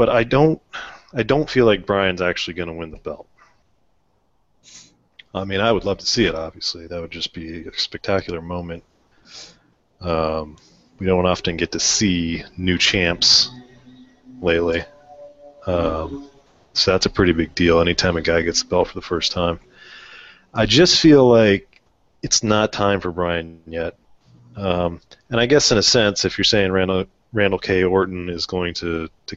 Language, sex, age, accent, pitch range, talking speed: English, male, 30-49, American, 85-105 Hz, 175 wpm